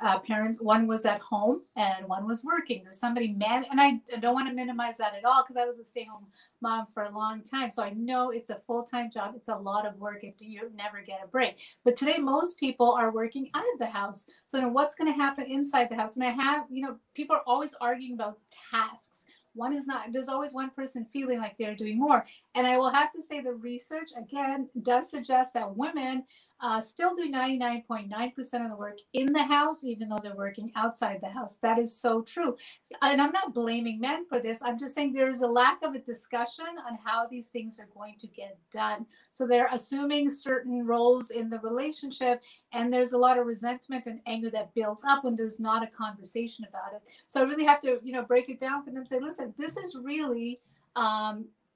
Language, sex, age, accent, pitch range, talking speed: English, female, 40-59, American, 225-265 Hz, 235 wpm